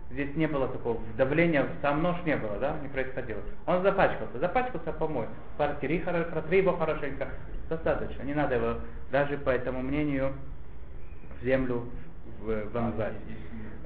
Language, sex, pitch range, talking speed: Russian, male, 115-165 Hz, 140 wpm